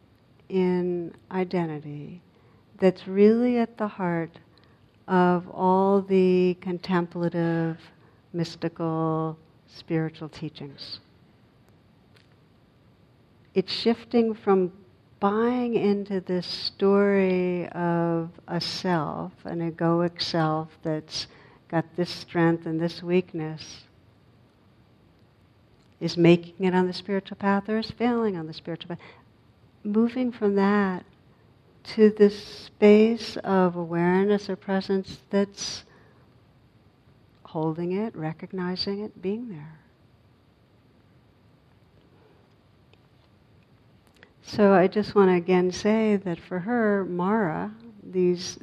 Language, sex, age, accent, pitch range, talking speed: English, female, 60-79, American, 160-195 Hz, 95 wpm